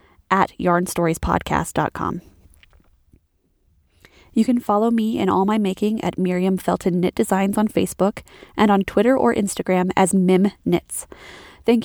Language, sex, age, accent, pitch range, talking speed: English, female, 20-39, American, 170-215 Hz, 130 wpm